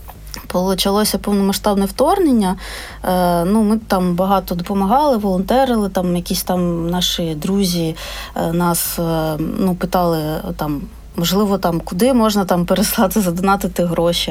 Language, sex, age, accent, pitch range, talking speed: Ukrainian, female, 20-39, native, 170-215 Hz, 110 wpm